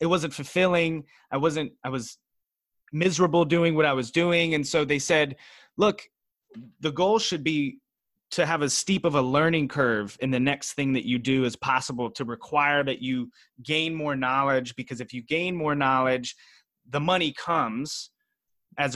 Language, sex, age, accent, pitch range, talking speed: English, male, 20-39, American, 130-165 Hz, 175 wpm